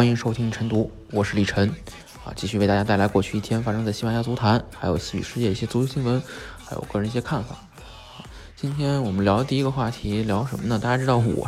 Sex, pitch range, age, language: male, 105-140 Hz, 20-39, Chinese